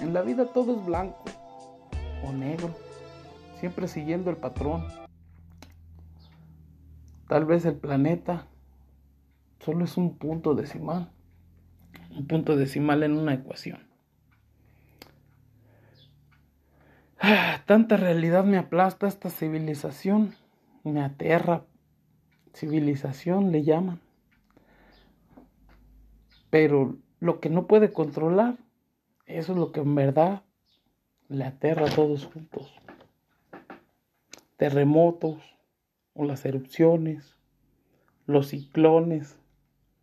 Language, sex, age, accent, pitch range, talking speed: Spanish, male, 50-69, Mexican, 130-180 Hz, 90 wpm